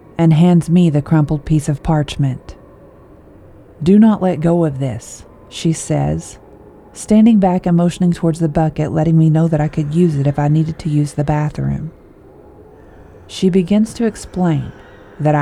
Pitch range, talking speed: 145-165 Hz, 165 wpm